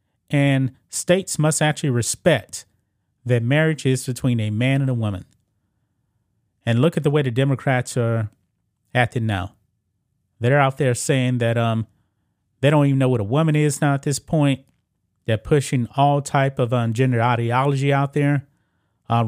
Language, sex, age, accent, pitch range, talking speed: English, male, 30-49, American, 110-140 Hz, 165 wpm